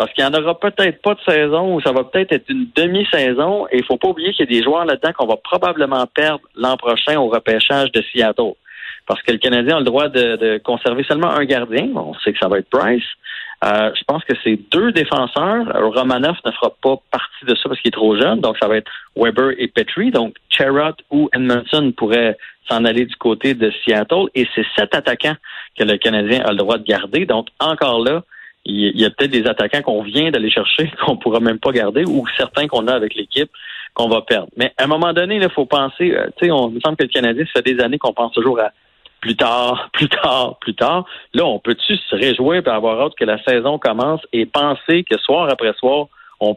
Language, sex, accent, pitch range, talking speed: French, male, Canadian, 115-160 Hz, 240 wpm